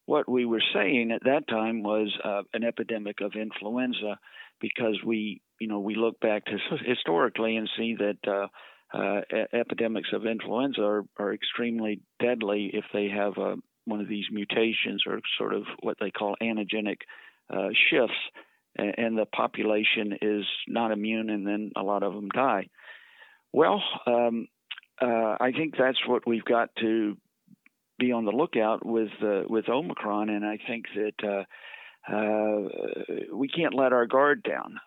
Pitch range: 105-120 Hz